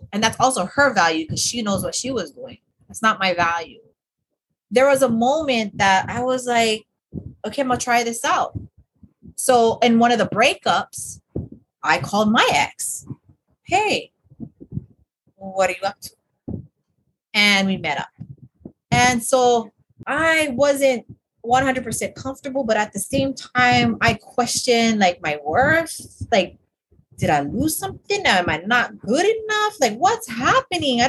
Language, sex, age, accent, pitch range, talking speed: English, female, 30-49, American, 200-265 Hz, 155 wpm